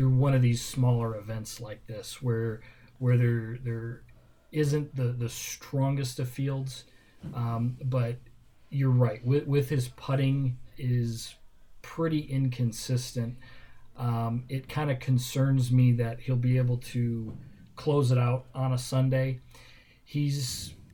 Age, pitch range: 40-59, 120-130 Hz